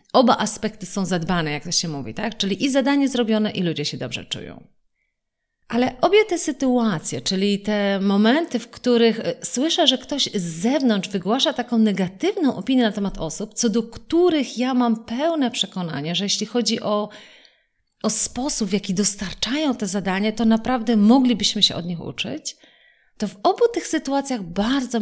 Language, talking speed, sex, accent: Polish, 170 wpm, female, native